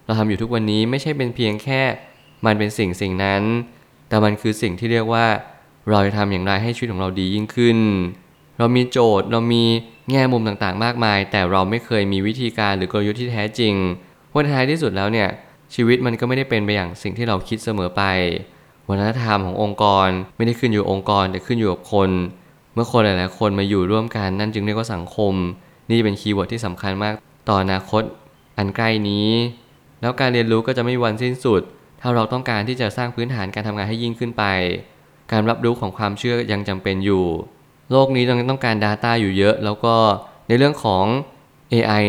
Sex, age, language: male, 20-39, Thai